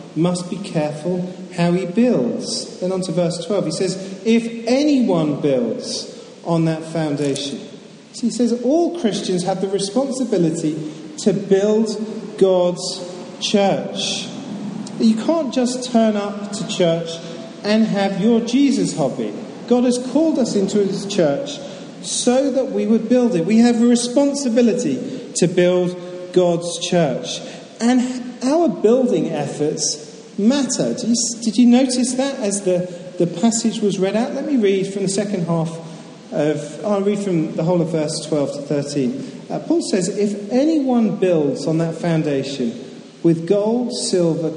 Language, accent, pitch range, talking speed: English, British, 175-235 Hz, 150 wpm